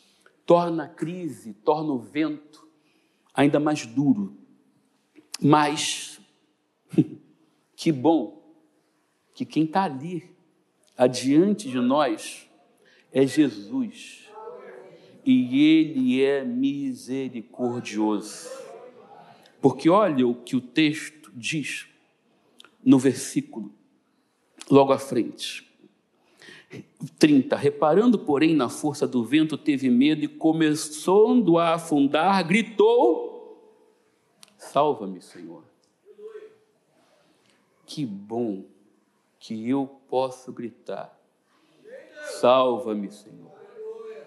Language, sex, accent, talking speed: Portuguese, male, Brazilian, 85 wpm